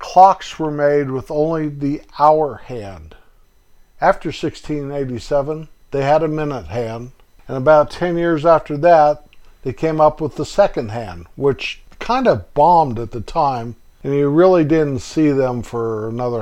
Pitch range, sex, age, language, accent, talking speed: 115-145 Hz, male, 50-69, English, American, 155 wpm